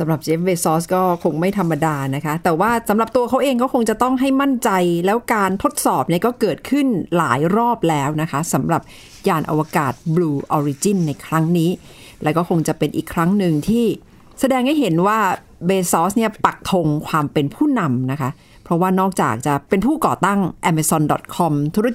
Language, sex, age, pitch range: Thai, female, 60-79, 155-210 Hz